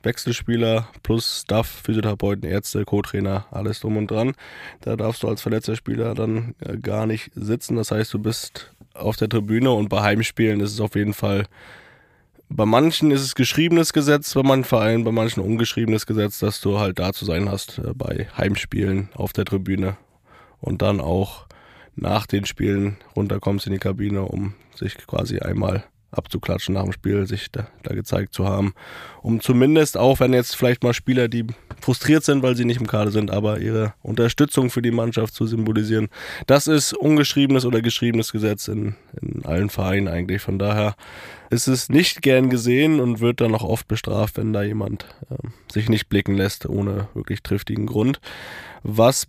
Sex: male